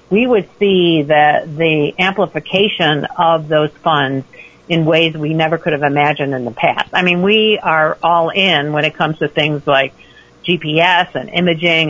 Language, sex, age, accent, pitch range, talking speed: English, female, 50-69, American, 145-175 Hz, 170 wpm